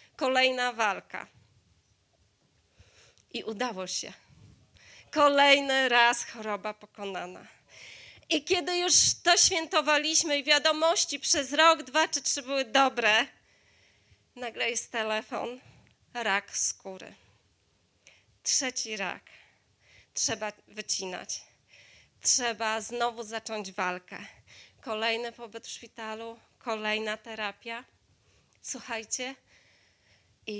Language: Polish